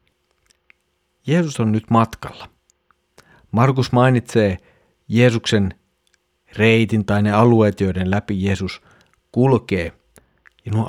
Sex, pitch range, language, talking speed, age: male, 100-130 Hz, Finnish, 95 wpm, 50-69